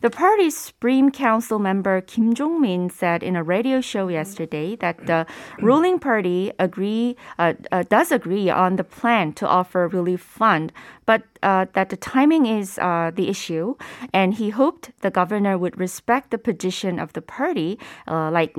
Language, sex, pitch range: Korean, female, 180-250 Hz